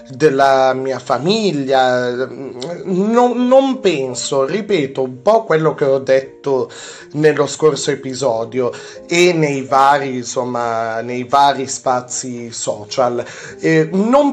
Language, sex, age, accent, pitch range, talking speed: Italian, male, 30-49, native, 130-185 Hz, 110 wpm